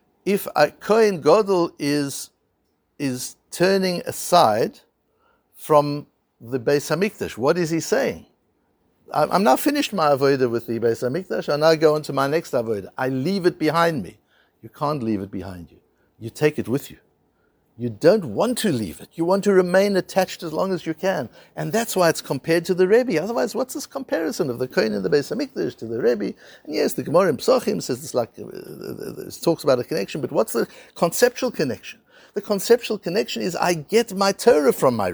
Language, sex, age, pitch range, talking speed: English, male, 60-79, 150-220 Hz, 195 wpm